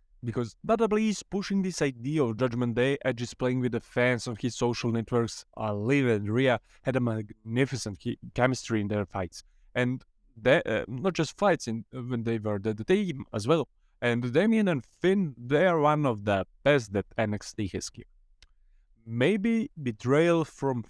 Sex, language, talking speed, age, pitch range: male, English, 175 wpm, 20-39, 110-140 Hz